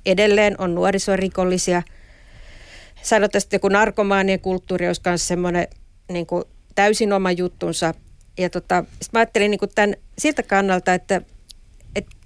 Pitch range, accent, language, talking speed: 175-210 Hz, native, Finnish, 115 wpm